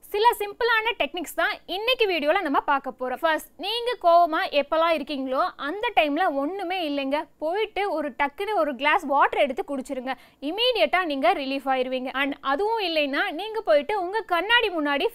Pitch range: 285-390 Hz